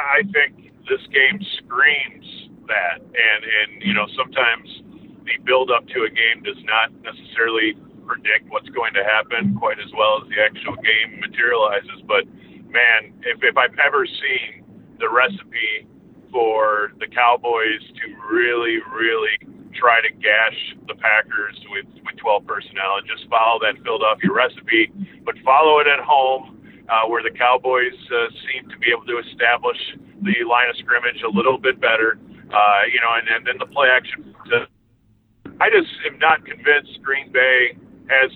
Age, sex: 40-59, male